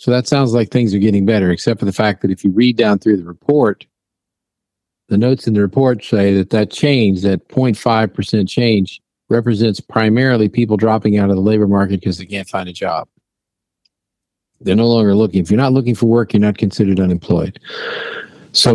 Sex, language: male, English